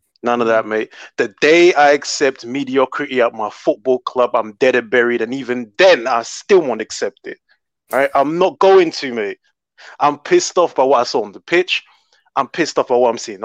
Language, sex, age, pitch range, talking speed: English, male, 20-39, 120-185 Hz, 215 wpm